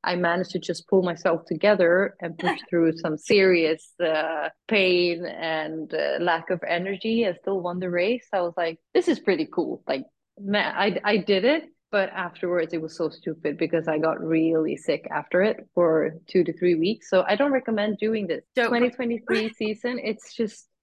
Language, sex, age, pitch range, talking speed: English, female, 30-49, 160-200 Hz, 185 wpm